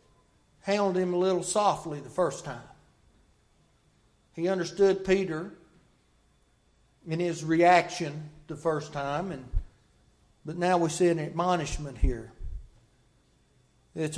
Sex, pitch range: male, 160-195 Hz